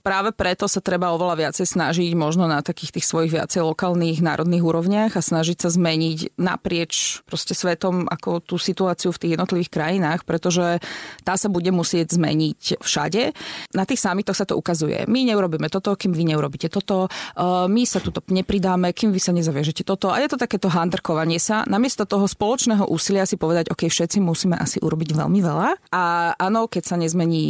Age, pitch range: 20-39, 165-200 Hz